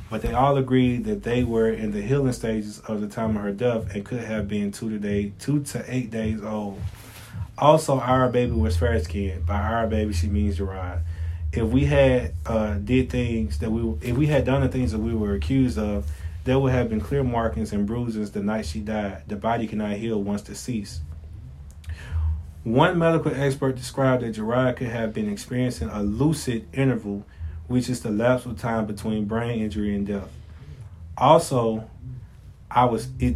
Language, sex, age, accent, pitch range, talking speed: English, male, 20-39, American, 100-125 Hz, 190 wpm